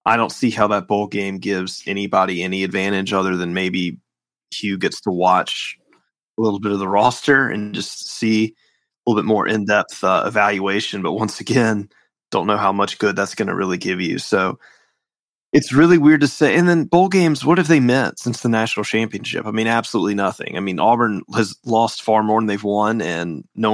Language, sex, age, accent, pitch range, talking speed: English, male, 20-39, American, 95-115 Hz, 205 wpm